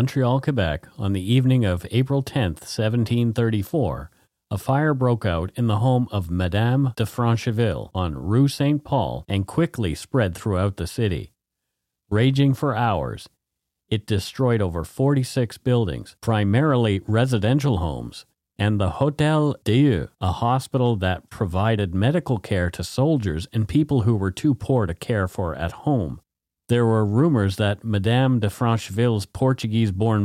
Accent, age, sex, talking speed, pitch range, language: American, 40-59, male, 145 wpm, 100-130 Hz, English